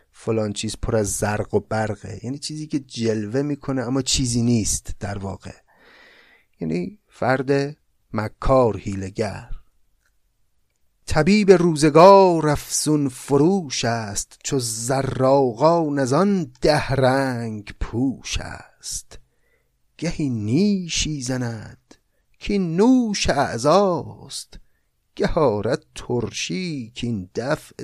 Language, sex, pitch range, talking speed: Persian, male, 110-150 Hz, 95 wpm